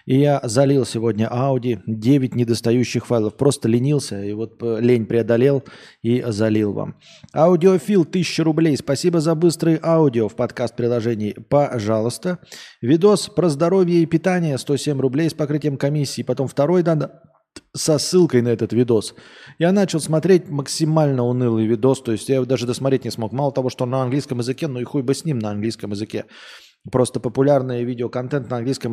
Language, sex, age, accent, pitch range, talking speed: Russian, male, 20-39, native, 115-150 Hz, 170 wpm